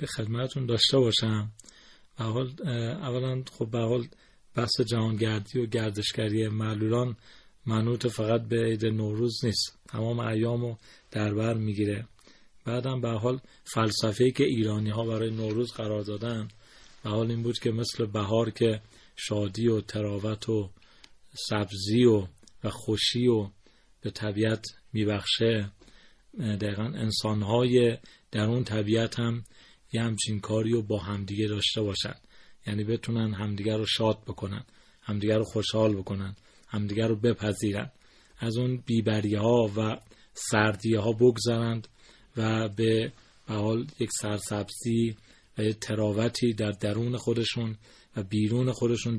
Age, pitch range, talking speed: 40-59, 105-120 Hz, 125 wpm